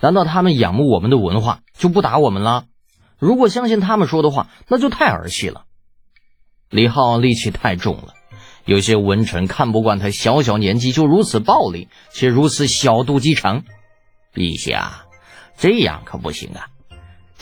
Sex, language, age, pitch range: male, Chinese, 20-39, 100-150 Hz